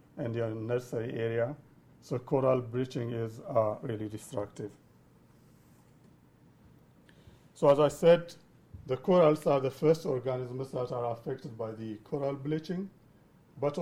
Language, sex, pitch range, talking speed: English, male, 120-150 Hz, 125 wpm